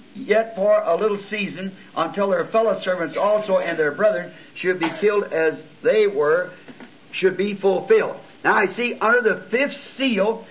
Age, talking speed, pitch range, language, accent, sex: 60-79, 165 wpm, 195-245 Hz, English, American, male